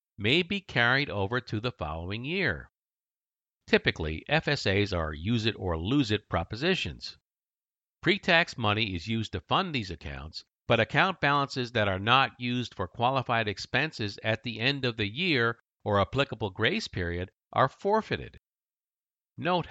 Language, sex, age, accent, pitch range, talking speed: English, male, 50-69, American, 95-140 Hz, 135 wpm